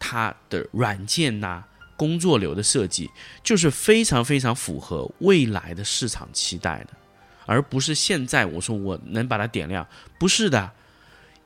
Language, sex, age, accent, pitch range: Chinese, male, 20-39, native, 105-165 Hz